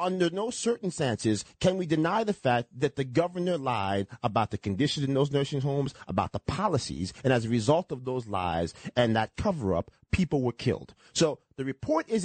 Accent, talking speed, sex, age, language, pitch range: American, 190 wpm, male, 30-49, English, 125-185 Hz